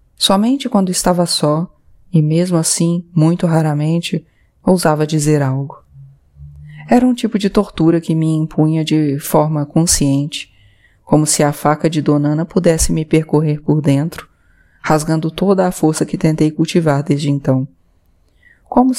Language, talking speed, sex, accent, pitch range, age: Portuguese, 140 wpm, female, Brazilian, 145-170 Hz, 20-39